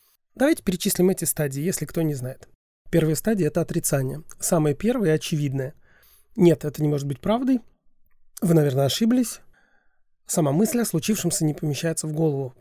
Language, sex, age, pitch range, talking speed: Russian, male, 30-49, 150-190 Hz, 150 wpm